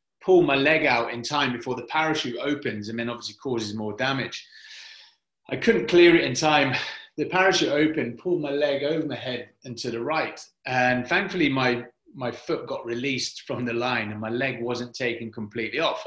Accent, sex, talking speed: British, male, 195 wpm